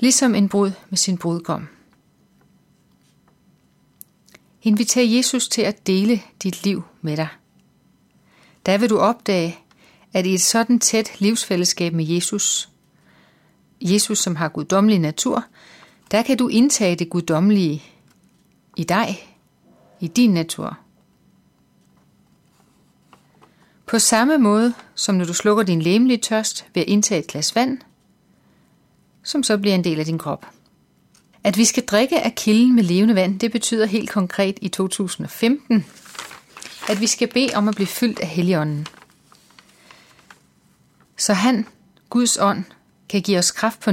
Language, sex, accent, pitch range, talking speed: Danish, female, native, 175-225 Hz, 140 wpm